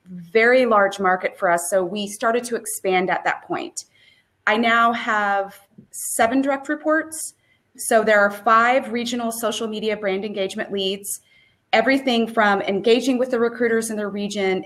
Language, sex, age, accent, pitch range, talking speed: English, female, 30-49, American, 190-230 Hz, 155 wpm